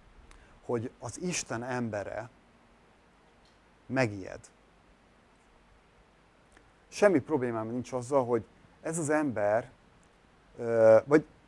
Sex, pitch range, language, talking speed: male, 110-155 Hz, Hungarian, 75 wpm